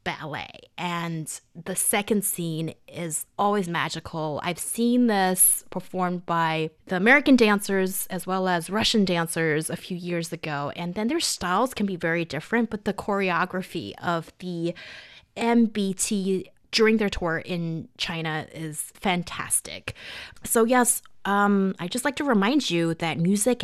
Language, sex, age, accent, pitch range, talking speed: English, female, 20-39, American, 170-215 Hz, 145 wpm